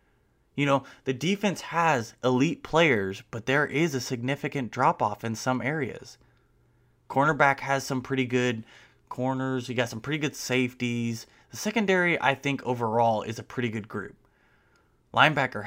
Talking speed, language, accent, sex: 150 wpm, English, American, male